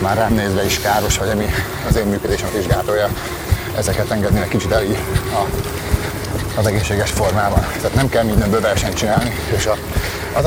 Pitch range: 95-115 Hz